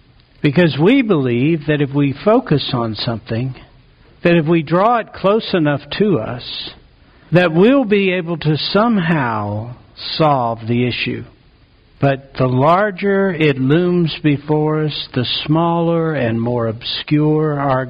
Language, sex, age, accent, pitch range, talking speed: English, male, 60-79, American, 120-170 Hz, 135 wpm